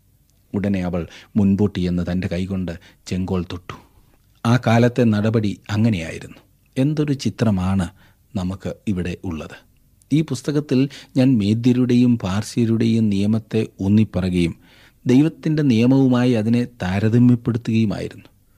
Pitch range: 95-125 Hz